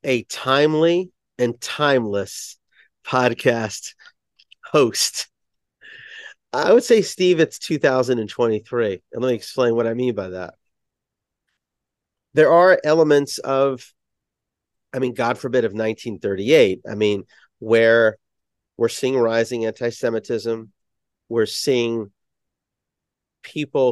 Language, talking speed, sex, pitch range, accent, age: English, 105 wpm, male, 110-130 Hz, American, 40-59